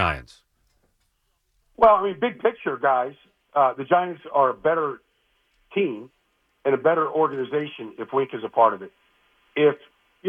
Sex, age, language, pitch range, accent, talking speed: male, 50-69, English, 145-190 Hz, American, 155 wpm